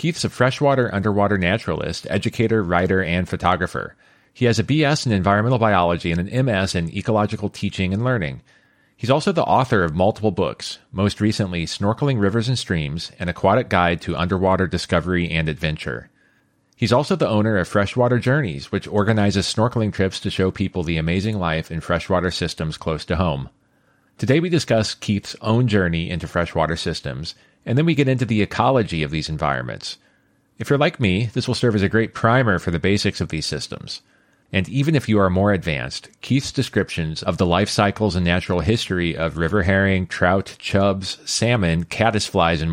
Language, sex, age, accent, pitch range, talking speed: English, male, 40-59, American, 85-115 Hz, 180 wpm